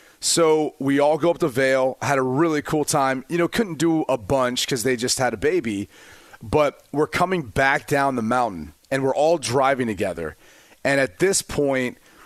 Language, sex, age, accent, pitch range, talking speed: English, male, 30-49, American, 120-150 Hz, 195 wpm